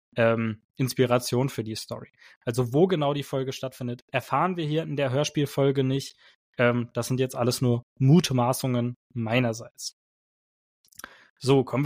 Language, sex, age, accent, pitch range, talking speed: German, male, 20-39, German, 130-180 Hz, 140 wpm